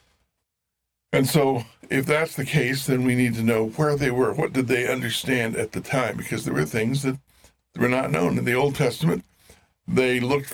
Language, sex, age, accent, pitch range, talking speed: English, male, 60-79, American, 115-140 Hz, 200 wpm